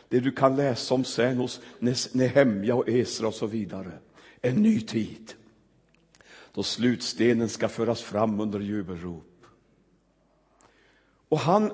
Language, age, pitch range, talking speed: Swedish, 60-79, 110-135 Hz, 130 wpm